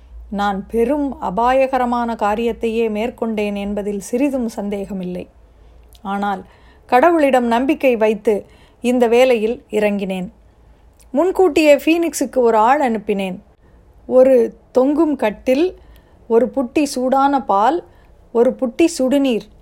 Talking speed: 90 wpm